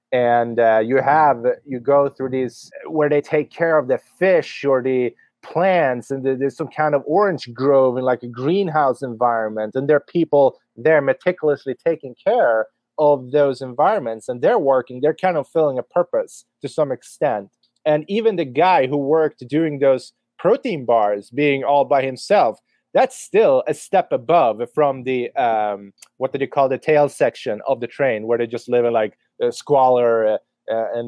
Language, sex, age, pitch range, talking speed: English, male, 30-49, 120-150 Hz, 185 wpm